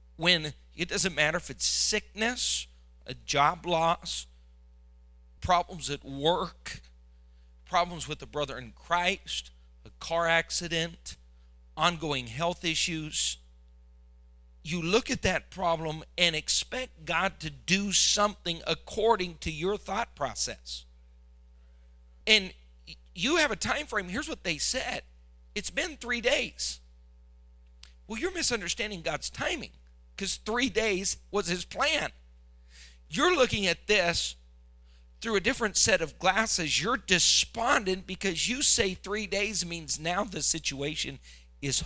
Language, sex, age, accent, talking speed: English, male, 40-59, American, 125 wpm